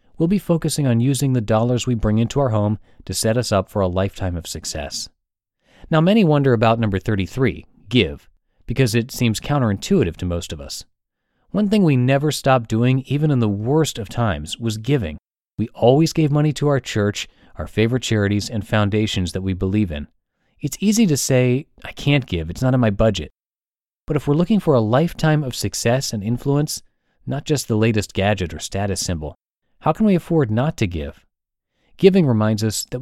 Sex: male